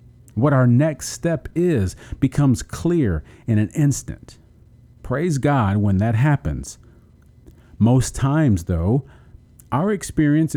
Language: English